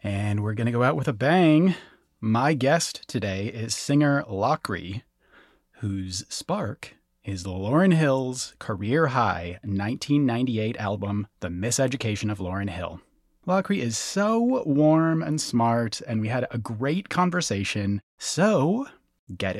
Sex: male